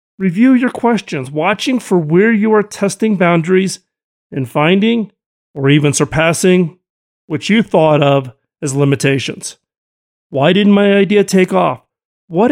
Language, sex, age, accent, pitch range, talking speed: English, male, 40-59, American, 150-200 Hz, 135 wpm